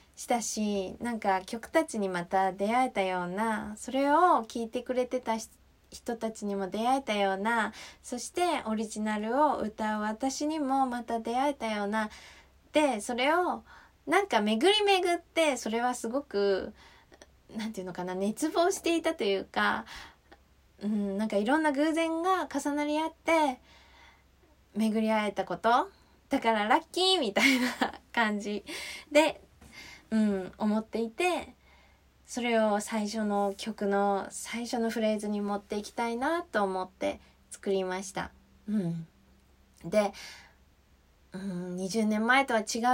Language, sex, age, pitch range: Japanese, female, 20-39, 205-270 Hz